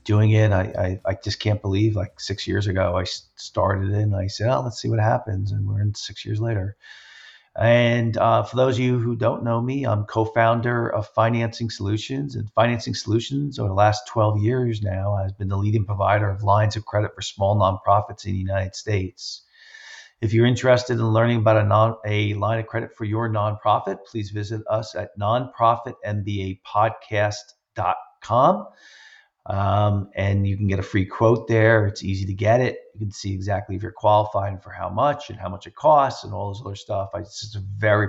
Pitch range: 100-115 Hz